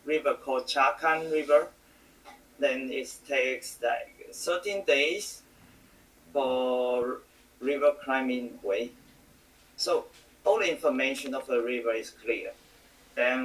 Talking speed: 105 wpm